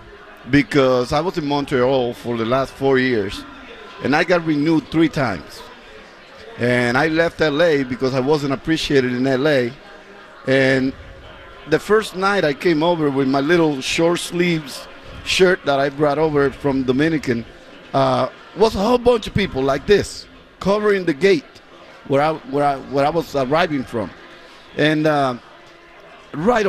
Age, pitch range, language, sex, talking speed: 50-69, 135-165 Hz, English, male, 155 wpm